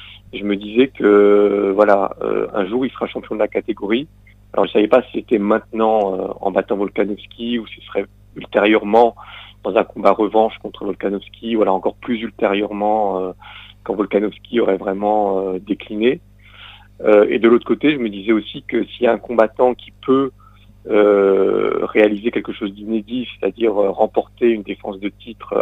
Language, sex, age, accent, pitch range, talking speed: French, male, 40-59, French, 100-115 Hz, 165 wpm